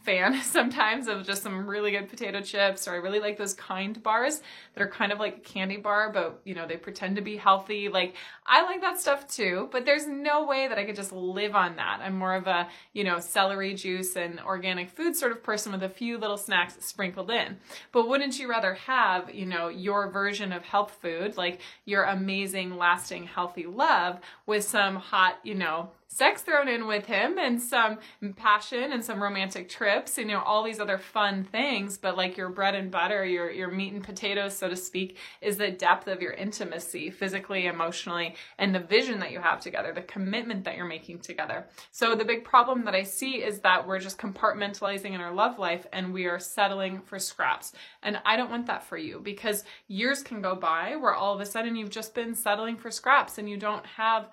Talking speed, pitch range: 220 wpm, 185-220 Hz